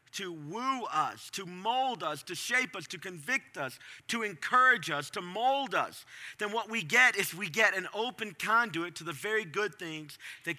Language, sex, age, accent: English, male, 50-69, American